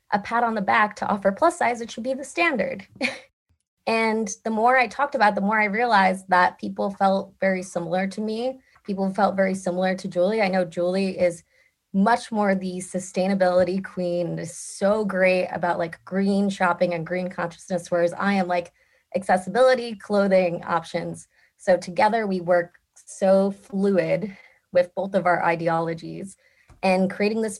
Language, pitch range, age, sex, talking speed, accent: English, 180-225 Hz, 20-39, female, 165 wpm, American